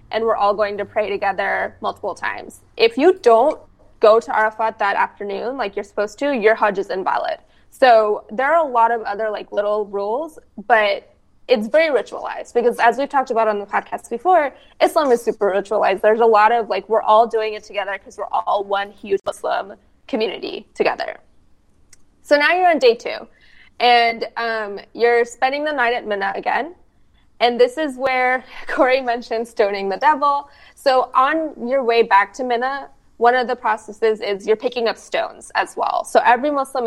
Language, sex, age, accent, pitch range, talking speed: English, female, 20-39, American, 215-260 Hz, 185 wpm